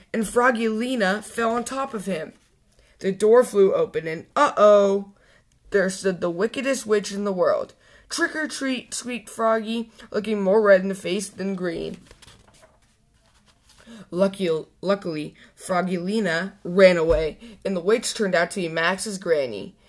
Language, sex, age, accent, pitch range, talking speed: English, female, 20-39, American, 185-235 Hz, 150 wpm